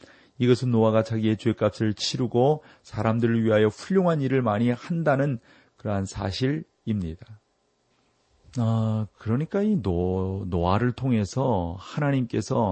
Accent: native